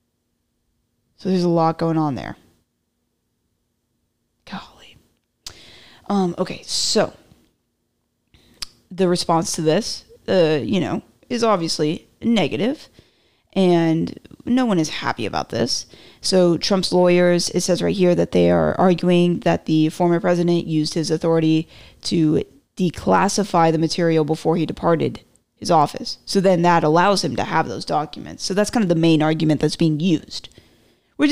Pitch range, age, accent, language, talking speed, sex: 165-190 Hz, 20-39, American, English, 145 wpm, female